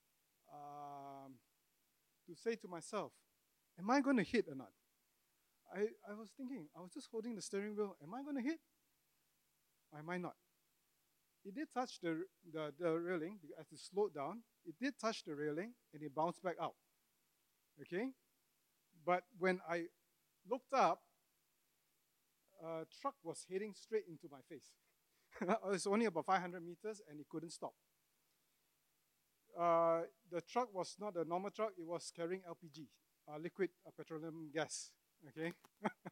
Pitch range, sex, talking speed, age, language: 160-205 Hz, male, 155 wpm, 30-49, English